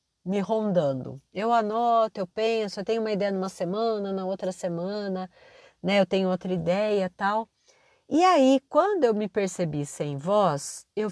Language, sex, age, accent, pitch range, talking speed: Portuguese, female, 40-59, Brazilian, 185-255 Hz, 165 wpm